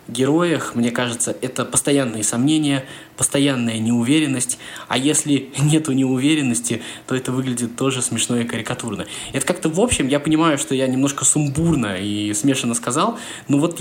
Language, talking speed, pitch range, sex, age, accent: Russian, 150 wpm, 110-135 Hz, male, 20-39, native